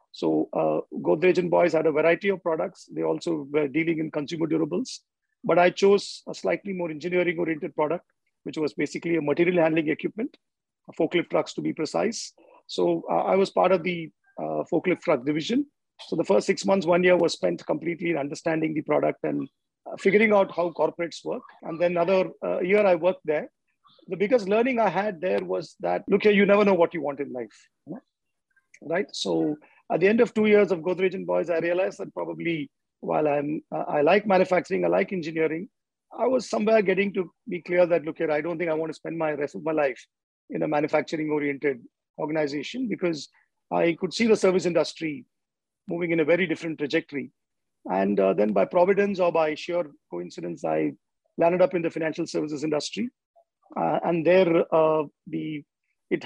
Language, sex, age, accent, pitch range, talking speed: English, male, 40-59, Indian, 155-195 Hz, 195 wpm